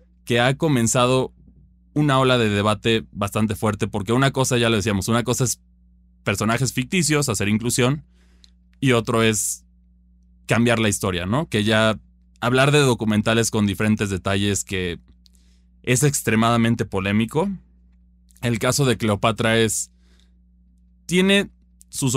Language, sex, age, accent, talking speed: Spanish, male, 20-39, Mexican, 130 wpm